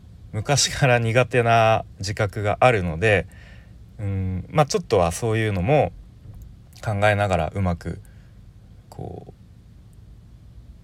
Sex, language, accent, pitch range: male, Japanese, native, 90-110 Hz